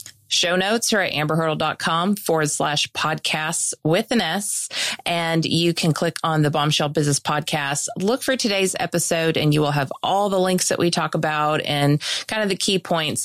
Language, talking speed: English, 185 wpm